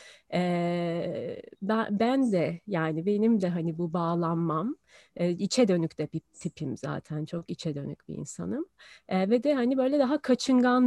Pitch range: 175-245 Hz